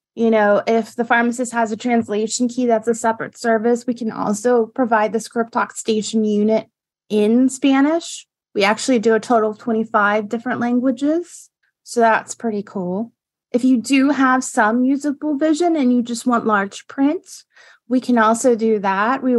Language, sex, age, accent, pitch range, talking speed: English, female, 20-39, American, 215-255 Hz, 175 wpm